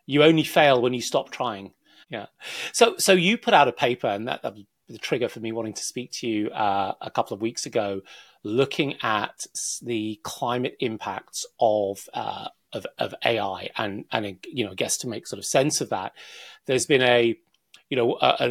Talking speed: 200 wpm